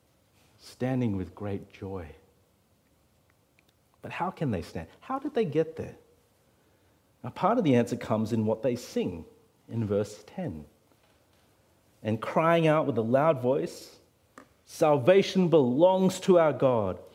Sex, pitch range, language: male, 115-165 Hz, English